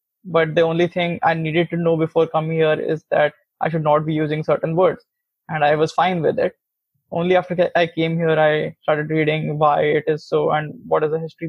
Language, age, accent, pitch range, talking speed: English, 20-39, Indian, 155-165 Hz, 225 wpm